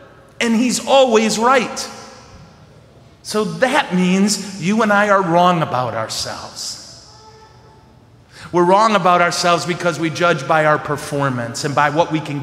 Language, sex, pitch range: English, male, 155-220 Hz